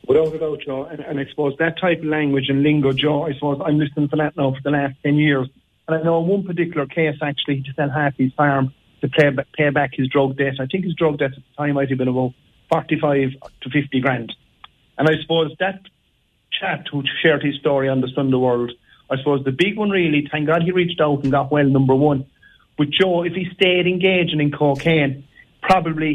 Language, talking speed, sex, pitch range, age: English, 230 wpm, male, 135-160 Hz, 40-59